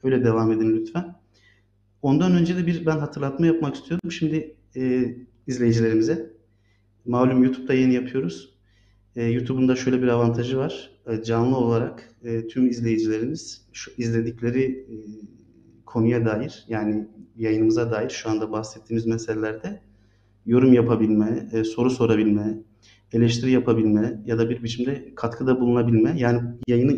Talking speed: 130 wpm